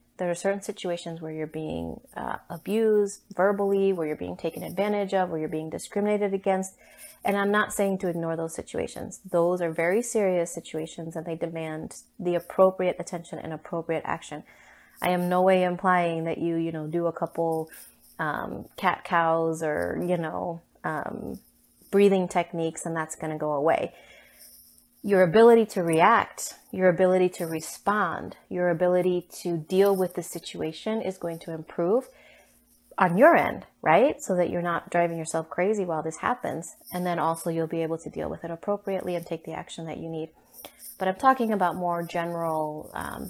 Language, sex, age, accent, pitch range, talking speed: English, female, 30-49, American, 165-195 Hz, 175 wpm